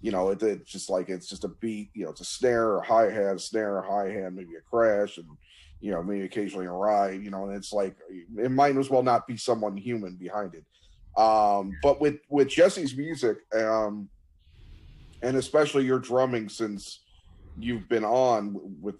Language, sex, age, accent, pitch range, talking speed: English, male, 30-49, American, 95-125 Hz, 205 wpm